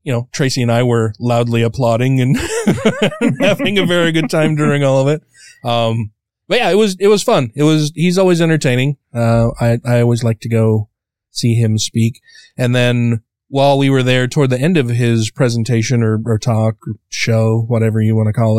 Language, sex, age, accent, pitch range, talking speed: English, male, 30-49, American, 110-135 Hz, 205 wpm